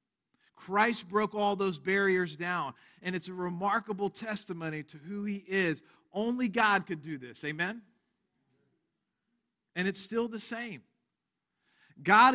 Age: 40-59